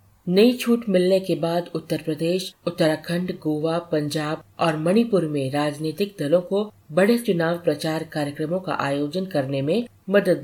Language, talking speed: Hindi, 145 wpm